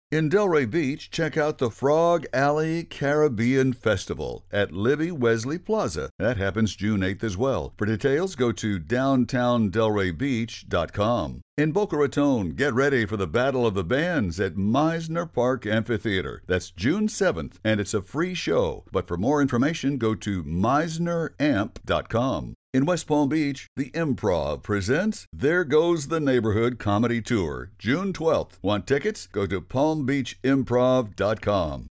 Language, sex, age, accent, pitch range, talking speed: English, male, 60-79, American, 110-145 Hz, 140 wpm